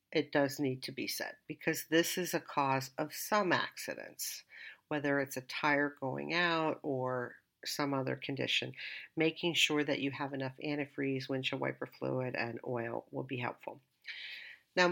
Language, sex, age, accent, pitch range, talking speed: English, female, 50-69, American, 135-175 Hz, 160 wpm